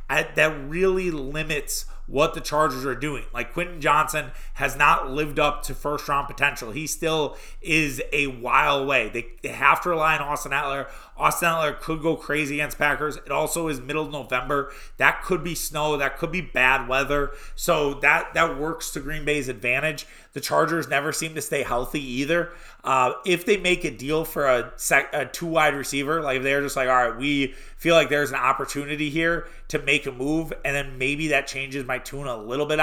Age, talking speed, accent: 30-49, 205 wpm, American